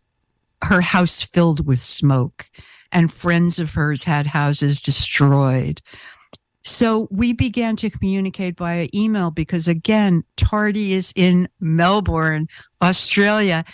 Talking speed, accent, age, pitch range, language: 115 wpm, American, 60-79, 150-205 Hz, English